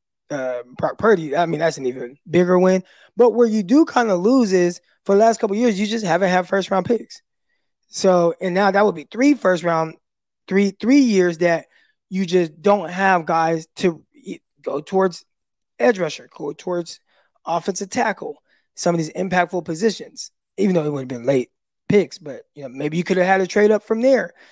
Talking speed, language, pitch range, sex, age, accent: 200 wpm, English, 160-195 Hz, male, 20-39, American